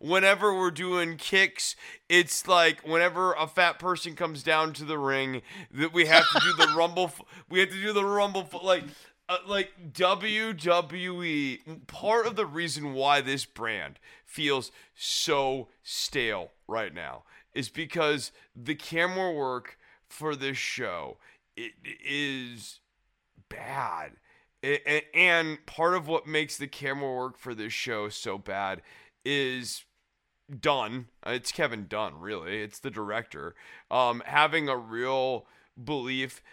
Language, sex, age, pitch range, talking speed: English, male, 30-49, 130-170 Hz, 140 wpm